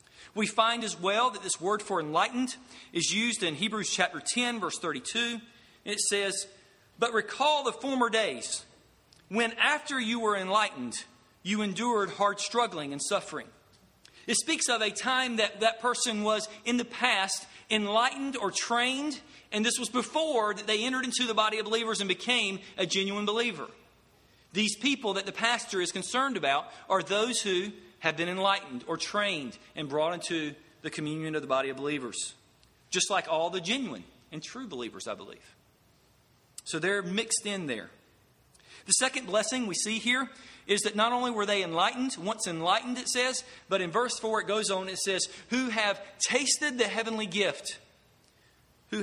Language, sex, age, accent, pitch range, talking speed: English, male, 40-59, American, 190-235 Hz, 175 wpm